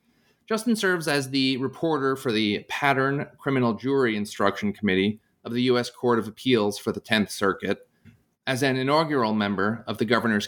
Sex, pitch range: male, 105-135 Hz